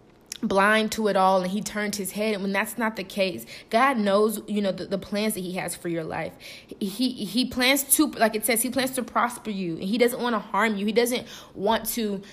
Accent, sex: American, female